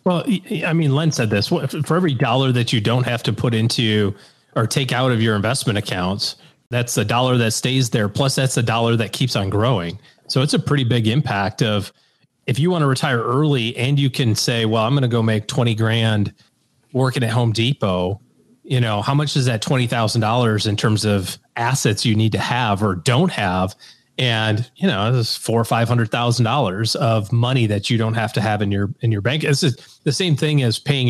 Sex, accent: male, American